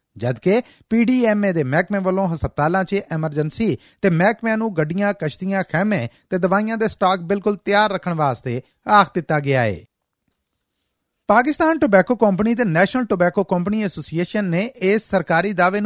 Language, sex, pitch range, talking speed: Punjabi, male, 155-215 Hz, 140 wpm